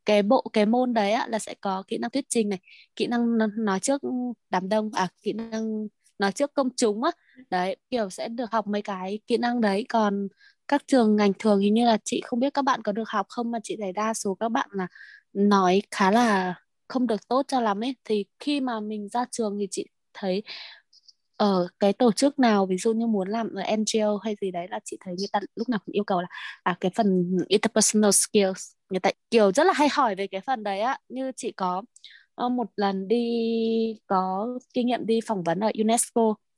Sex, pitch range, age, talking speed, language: female, 200-240 Hz, 20-39, 225 wpm, Vietnamese